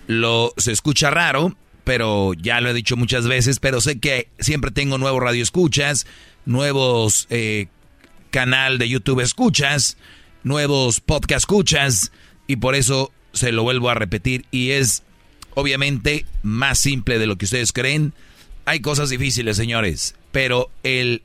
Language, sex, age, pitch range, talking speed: Spanish, male, 40-59, 115-140 Hz, 145 wpm